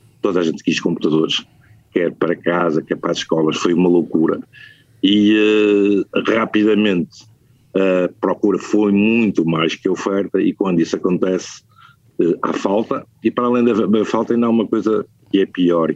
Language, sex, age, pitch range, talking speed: Portuguese, male, 50-69, 90-110 Hz, 165 wpm